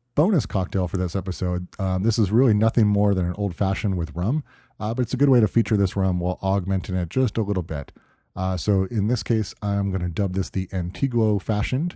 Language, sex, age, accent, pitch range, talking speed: English, male, 30-49, American, 95-115 Hz, 230 wpm